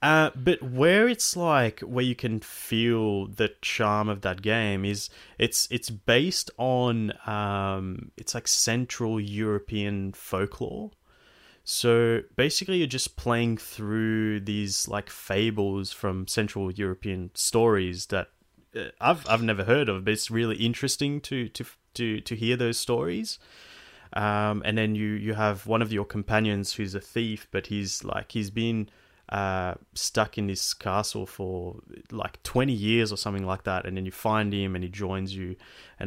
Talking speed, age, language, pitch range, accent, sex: 160 wpm, 30-49, English, 95-115 Hz, Australian, male